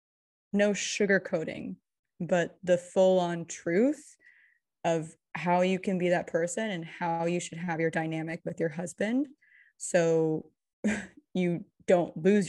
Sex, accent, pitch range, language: female, American, 170-190 Hz, English